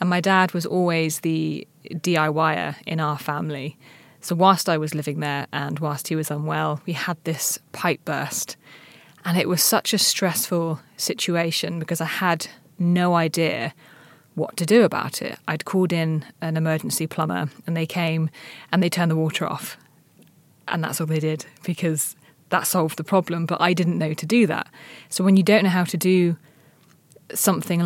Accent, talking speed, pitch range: British, 180 wpm, 160-180 Hz